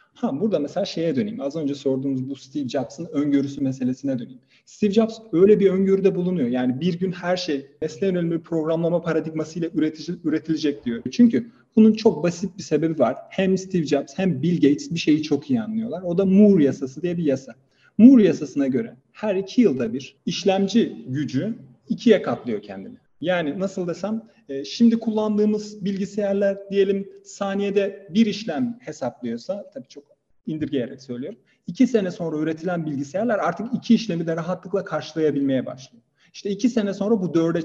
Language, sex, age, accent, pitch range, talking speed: Turkish, male, 40-59, native, 155-210 Hz, 165 wpm